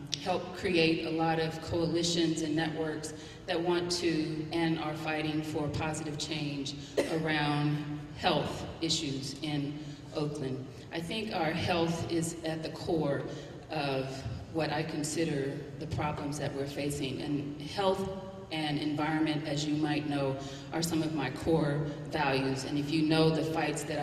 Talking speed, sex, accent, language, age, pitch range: 150 wpm, female, American, English, 40-59, 145-160 Hz